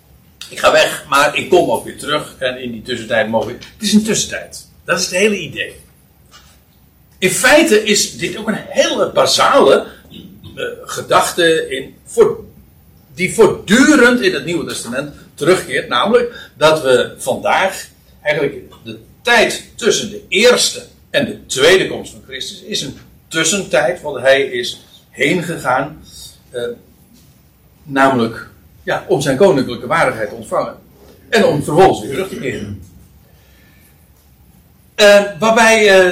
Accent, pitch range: Dutch, 130-215 Hz